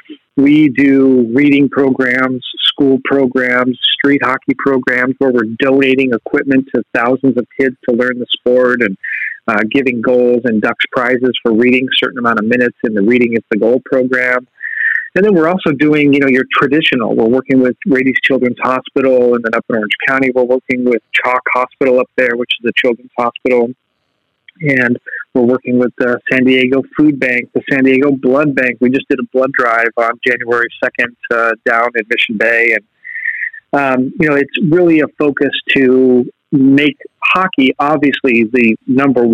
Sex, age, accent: male, 40-59, American